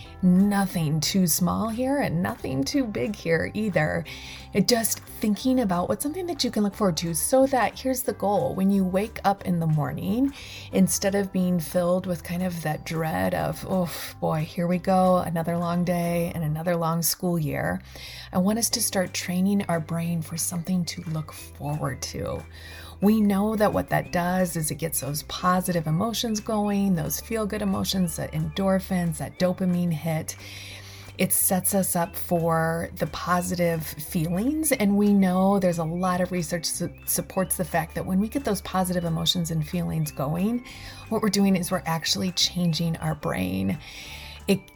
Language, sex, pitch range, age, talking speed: English, female, 165-195 Hz, 30-49, 175 wpm